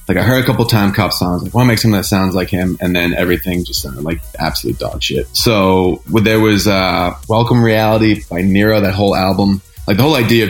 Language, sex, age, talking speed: English, male, 20-39, 240 wpm